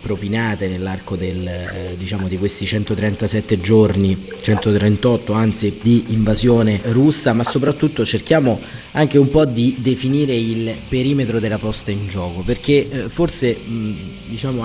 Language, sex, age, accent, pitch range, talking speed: Italian, male, 30-49, native, 105-120 Hz, 135 wpm